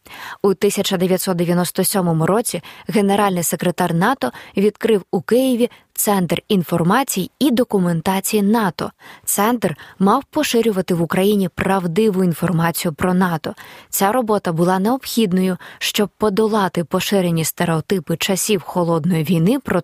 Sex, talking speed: female, 105 wpm